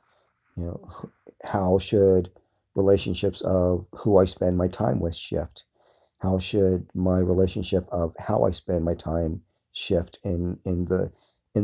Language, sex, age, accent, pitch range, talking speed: English, male, 50-69, American, 90-100 Hz, 145 wpm